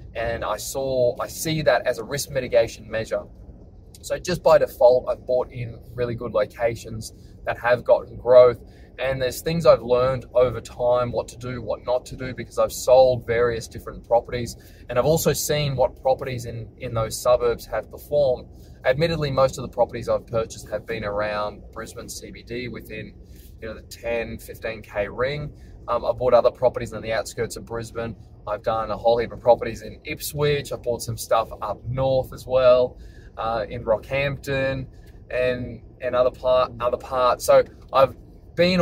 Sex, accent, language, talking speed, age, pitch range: male, Australian, English, 180 wpm, 20-39, 110-130 Hz